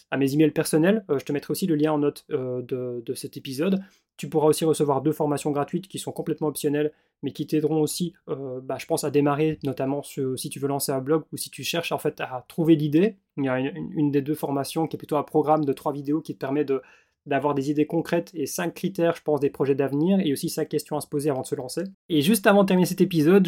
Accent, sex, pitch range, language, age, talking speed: French, male, 145-170 Hz, French, 20-39, 275 wpm